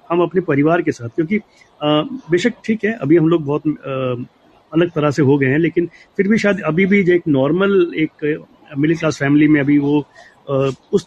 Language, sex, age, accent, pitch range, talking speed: Hindi, male, 30-49, native, 135-170 Hz, 210 wpm